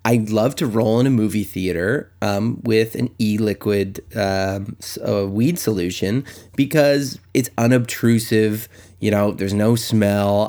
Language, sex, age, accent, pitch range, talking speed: English, male, 30-49, American, 105-120 Hz, 150 wpm